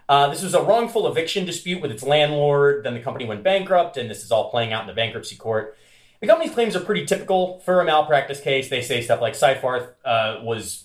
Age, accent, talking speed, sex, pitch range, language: 30-49, American, 230 wpm, male, 115-155 Hz, English